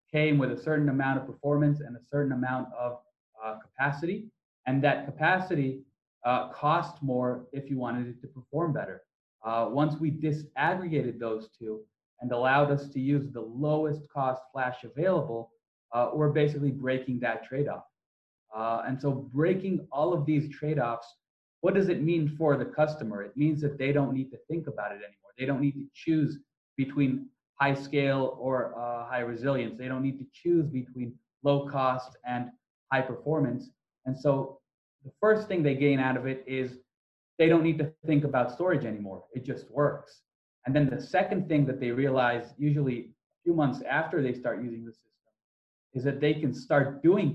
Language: English